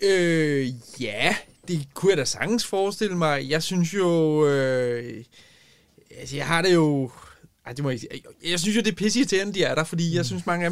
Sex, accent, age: male, native, 20-39